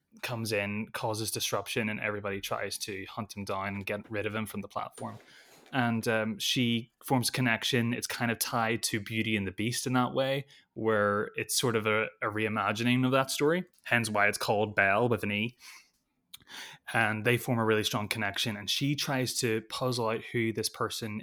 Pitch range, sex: 105-120 Hz, male